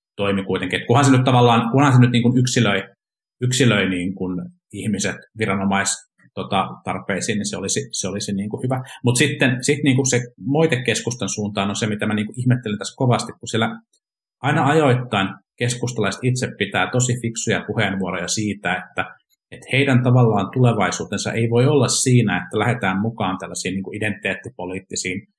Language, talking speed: Finnish, 160 wpm